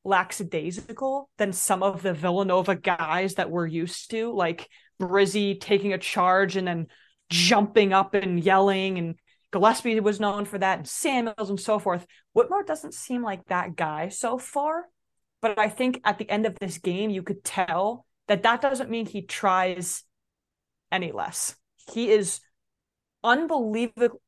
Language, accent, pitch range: English, American, 190-245 Hz